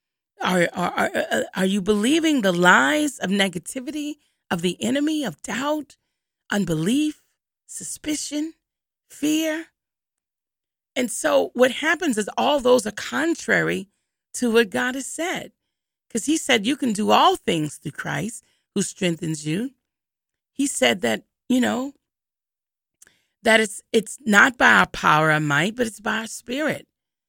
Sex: female